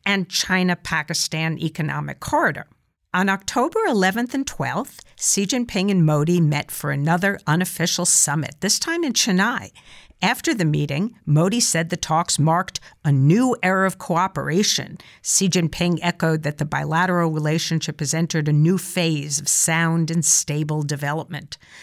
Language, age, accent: English, 50-69, American